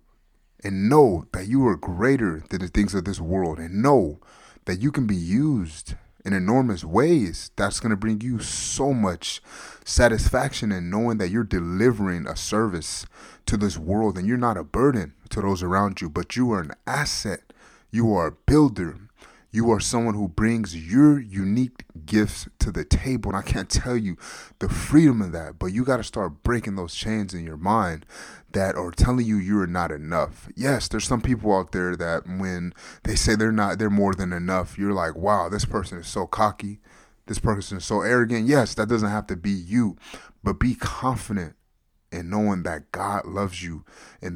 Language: English